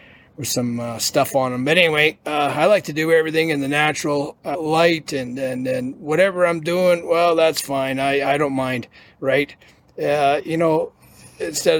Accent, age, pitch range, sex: American, 30-49, 125-155 Hz, male